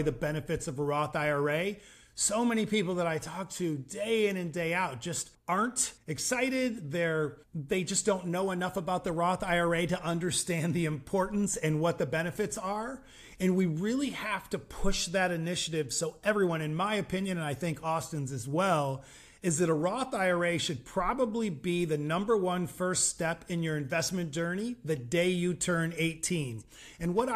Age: 40-59